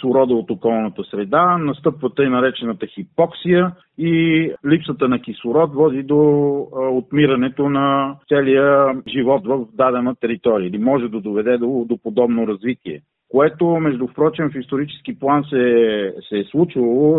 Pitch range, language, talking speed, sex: 115-145 Hz, Bulgarian, 135 wpm, male